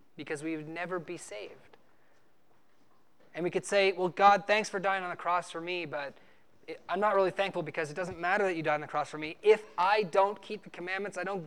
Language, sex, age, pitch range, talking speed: English, male, 20-39, 145-185 Hz, 235 wpm